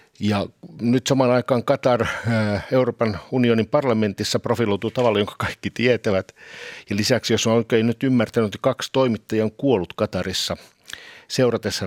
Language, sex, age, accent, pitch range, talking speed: Finnish, male, 60-79, native, 110-145 Hz, 135 wpm